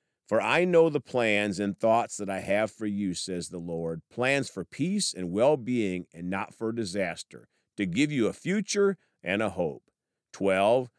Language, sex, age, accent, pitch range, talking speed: English, male, 50-69, American, 95-135 Hz, 180 wpm